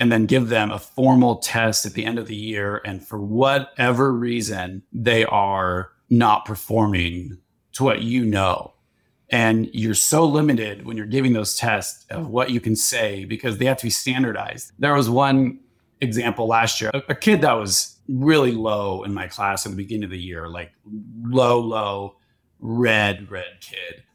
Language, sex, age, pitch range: English, male, 30-49, 105-130 Hz